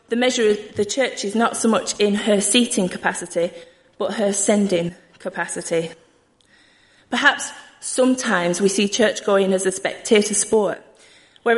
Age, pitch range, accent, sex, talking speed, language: 30-49, 195-245 Hz, British, female, 145 wpm, English